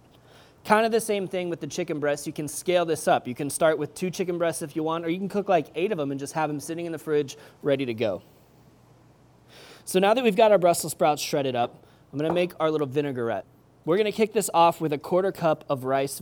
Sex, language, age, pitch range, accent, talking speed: male, English, 20-39, 145-190 Hz, American, 260 wpm